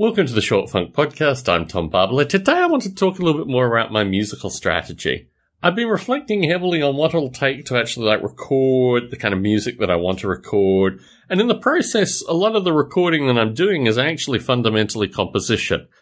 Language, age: English, 30-49